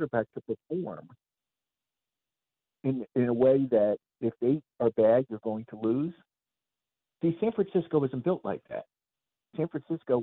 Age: 50-69